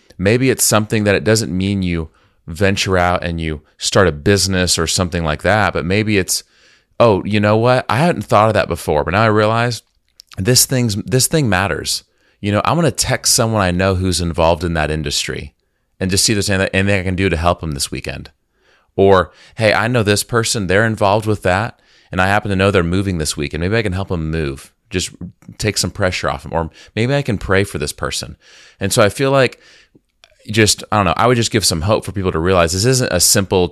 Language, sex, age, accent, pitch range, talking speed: English, male, 30-49, American, 85-105 Hz, 235 wpm